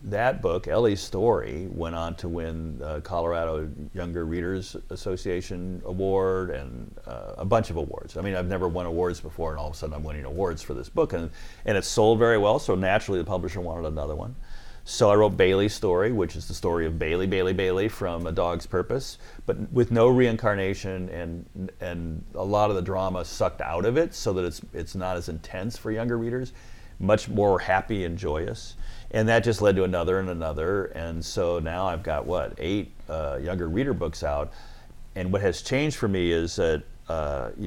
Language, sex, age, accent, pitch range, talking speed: English, male, 40-59, American, 80-100 Hz, 205 wpm